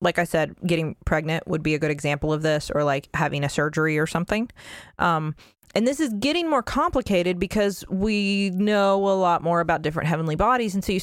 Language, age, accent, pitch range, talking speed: English, 20-39, American, 155-180 Hz, 210 wpm